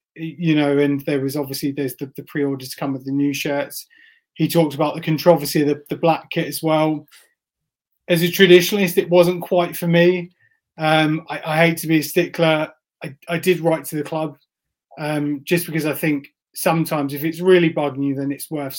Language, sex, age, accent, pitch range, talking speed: English, male, 30-49, British, 140-170 Hz, 210 wpm